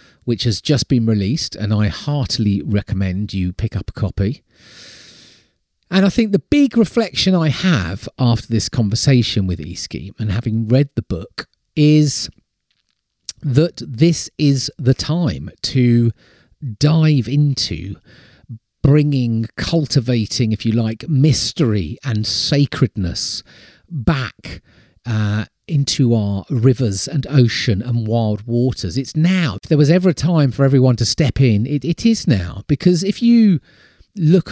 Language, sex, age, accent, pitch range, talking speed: English, male, 40-59, British, 105-145 Hz, 135 wpm